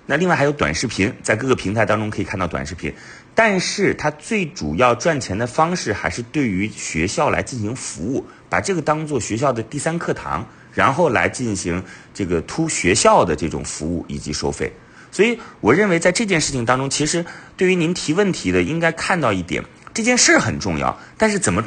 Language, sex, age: Chinese, male, 30-49